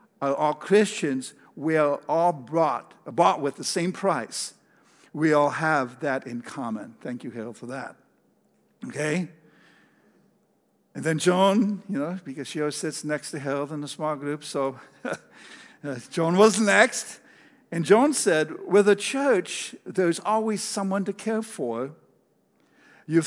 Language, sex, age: English, male, 60-79